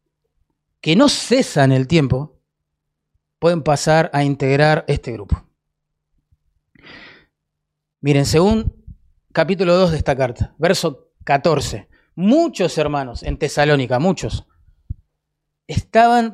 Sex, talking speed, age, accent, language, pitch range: male, 95 wpm, 30-49, Argentinian, Spanish, 140-215 Hz